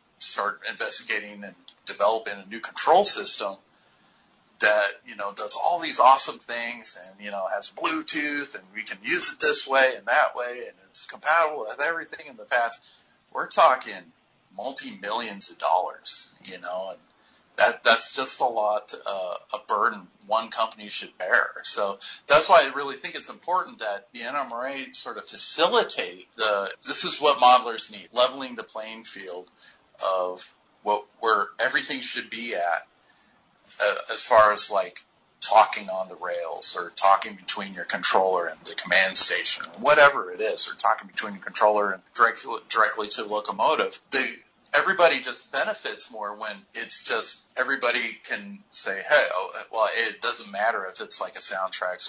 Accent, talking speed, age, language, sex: American, 165 wpm, 40-59, English, male